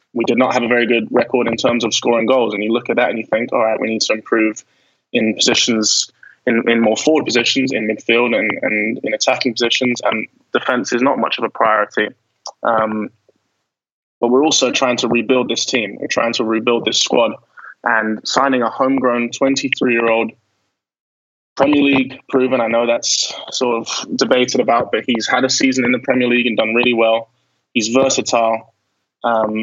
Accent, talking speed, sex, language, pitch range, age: British, 195 wpm, male, English, 110-130 Hz, 20-39